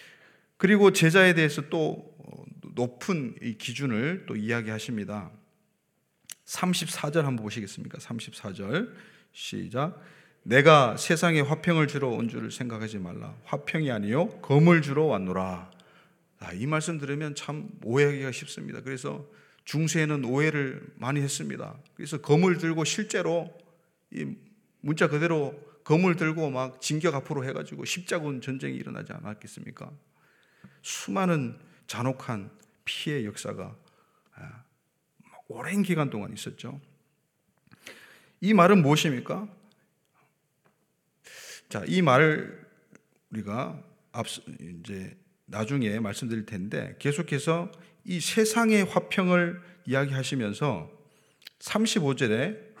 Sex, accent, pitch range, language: male, native, 130-175 Hz, Korean